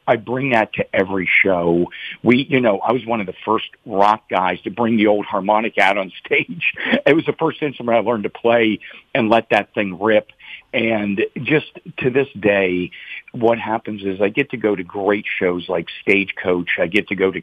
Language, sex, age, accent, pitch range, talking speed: English, male, 50-69, American, 95-125 Hz, 210 wpm